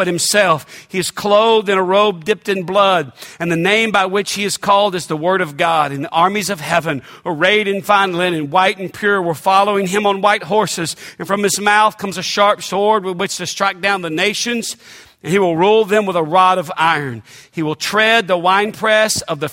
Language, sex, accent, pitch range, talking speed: English, male, American, 170-210 Hz, 225 wpm